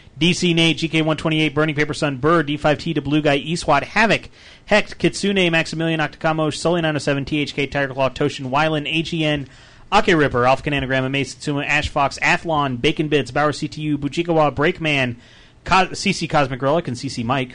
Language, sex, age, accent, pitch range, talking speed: English, male, 30-49, American, 130-160 Hz, 155 wpm